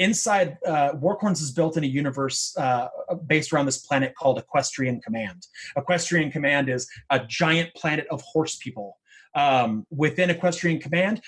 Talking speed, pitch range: 155 wpm, 135-175 Hz